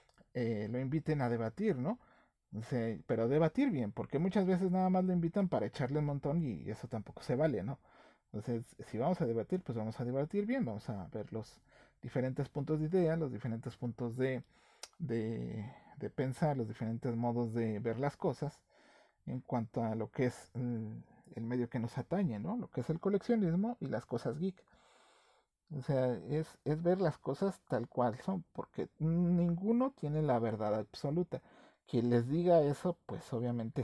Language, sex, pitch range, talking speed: Spanish, male, 120-165 Hz, 180 wpm